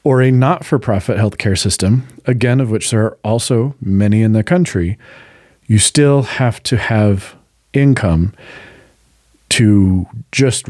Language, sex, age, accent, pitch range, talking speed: English, male, 40-59, American, 105-130 Hz, 130 wpm